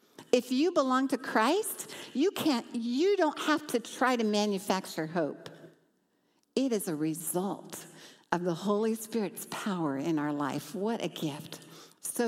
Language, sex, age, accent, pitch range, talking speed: English, female, 60-79, American, 165-235 Hz, 150 wpm